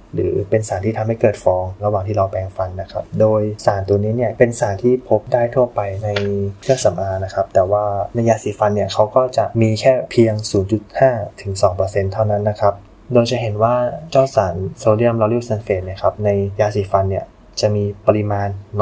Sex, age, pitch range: male, 20-39, 100-110 Hz